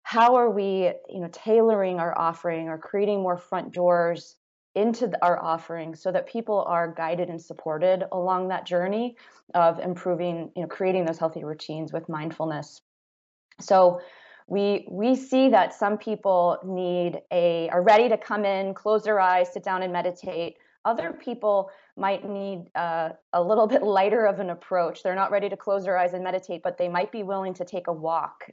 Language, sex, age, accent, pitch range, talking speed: English, female, 20-39, American, 165-195 Hz, 185 wpm